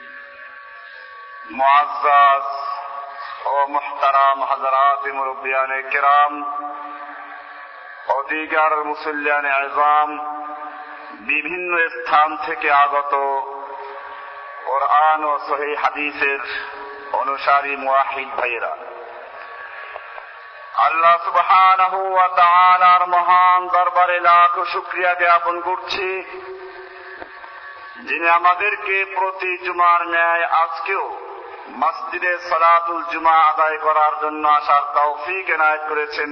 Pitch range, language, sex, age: 145-175 Hz, Bengali, male, 50-69